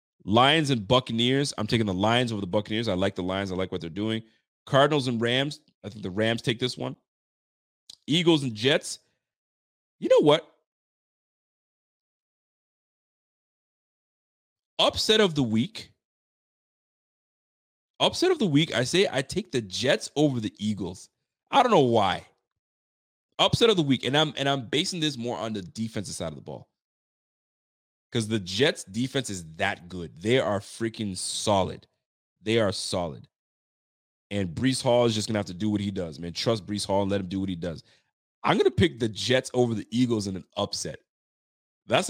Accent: American